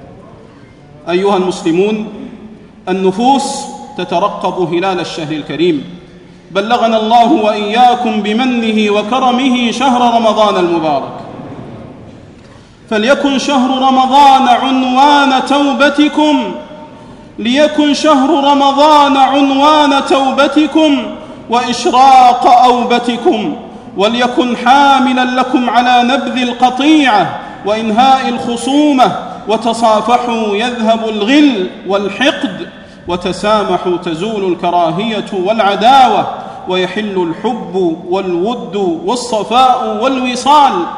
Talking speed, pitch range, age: 65 wpm, 190-270 Hz, 40-59